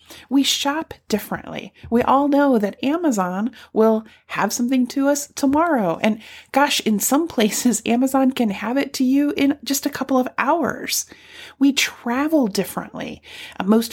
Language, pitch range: English, 210-265 Hz